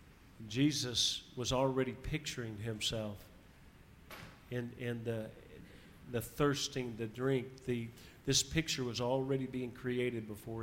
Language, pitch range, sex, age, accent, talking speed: English, 105-130 Hz, male, 50-69, American, 120 wpm